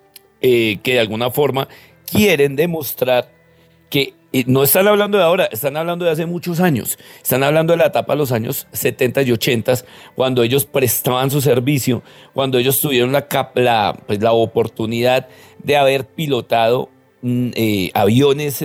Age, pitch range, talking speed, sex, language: 40-59, 125-155 Hz, 165 wpm, male, Spanish